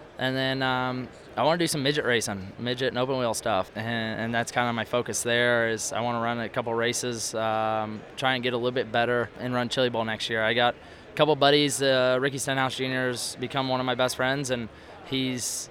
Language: English